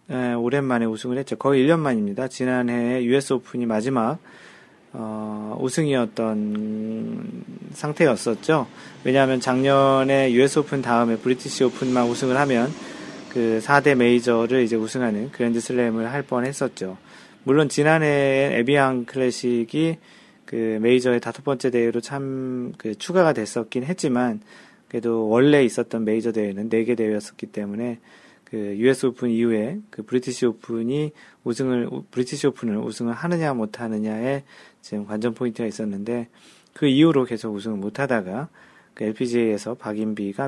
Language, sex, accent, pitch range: Korean, male, native, 115-140 Hz